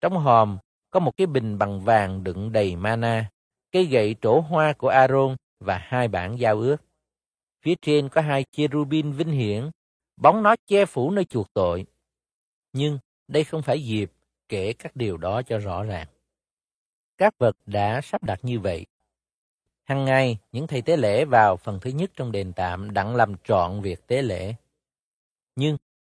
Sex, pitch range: male, 105-150 Hz